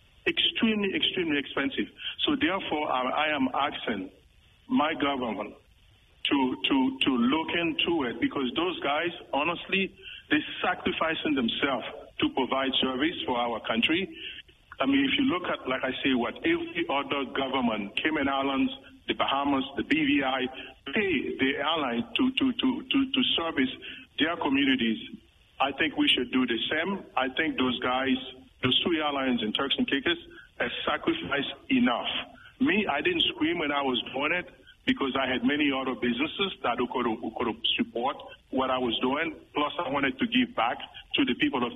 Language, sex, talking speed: English, male, 165 wpm